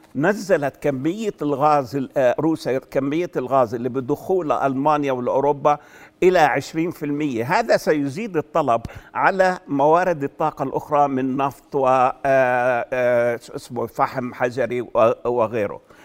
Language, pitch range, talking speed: Arabic, 140-165 Hz, 95 wpm